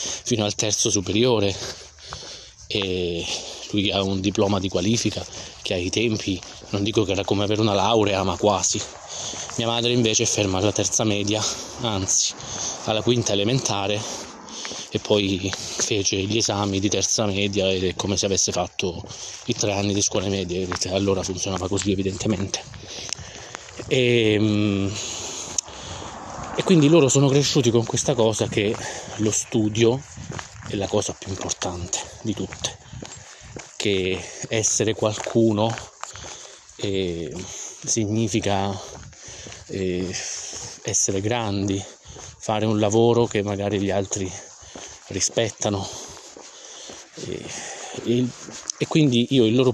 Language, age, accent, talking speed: Italian, 20-39, native, 120 wpm